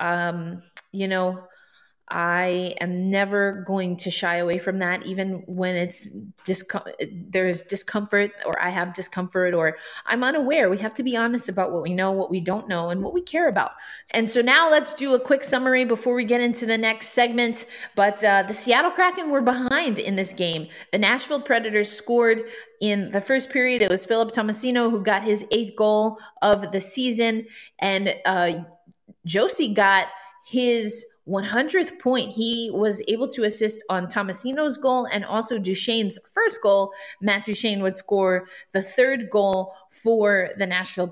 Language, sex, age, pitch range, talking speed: English, female, 20-39, 185-235 Hz, 170 wpm